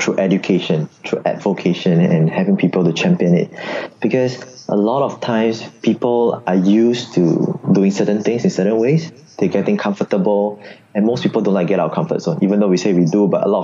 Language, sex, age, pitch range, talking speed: English, male, 20-39, 100-130 Hz, 210 wpm